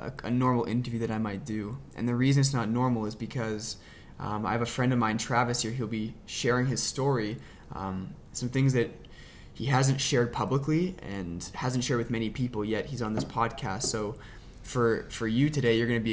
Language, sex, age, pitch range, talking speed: English, male, 20-39, 110-125 Hz, 210 wpm